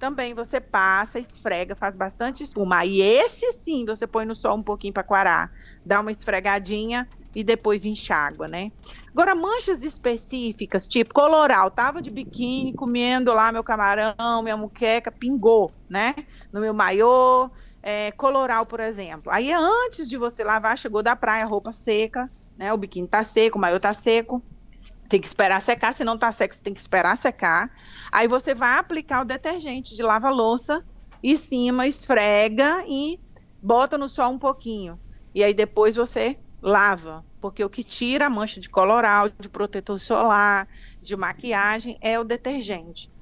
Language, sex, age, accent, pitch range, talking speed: Portuguese, female, 30-49, Brazilian, 200-255 Hz, 165 wpm